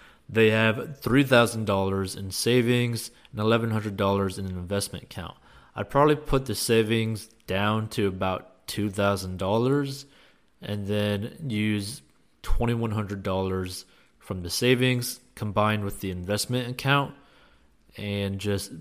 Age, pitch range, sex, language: 20-39, 95-115 Hz, male, English